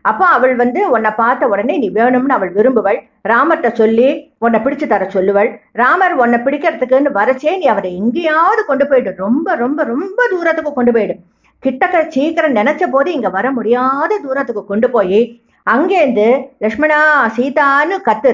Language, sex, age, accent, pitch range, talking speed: English, female, 50-69, Indian, 210-265 Hz, 135 wpm